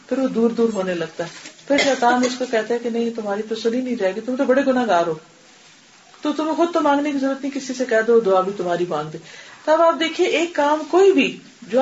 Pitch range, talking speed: 195-280 Hz, 265 wpm